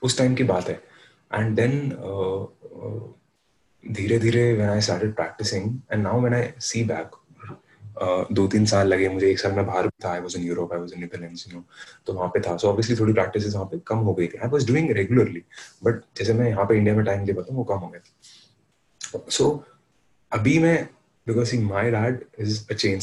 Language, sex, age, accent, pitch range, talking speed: Hindi, male, 30-49, native, 95-115 Hz, 170 wpm